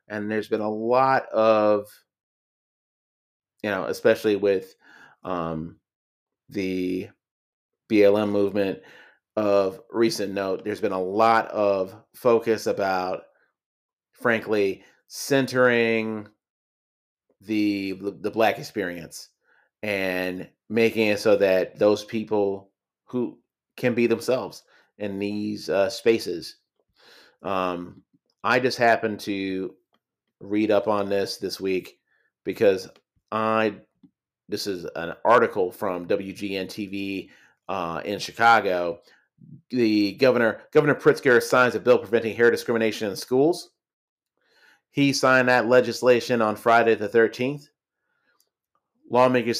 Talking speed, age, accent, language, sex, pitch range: 110 wpm, 30-49, American, English, male, 100-120 Hz